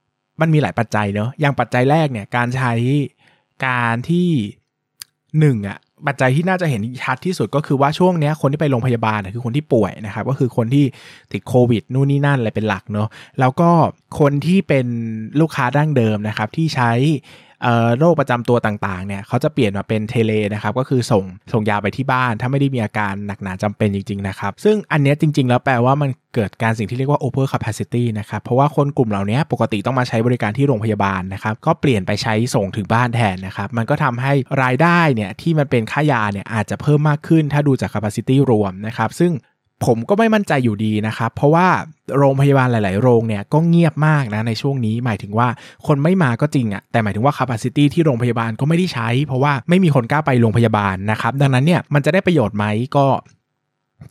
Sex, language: male, Thai